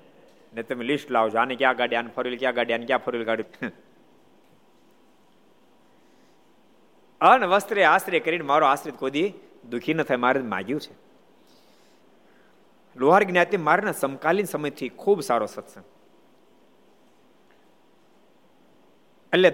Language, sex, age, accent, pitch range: Gujarati, male, 50-69, native, 140-200 Hz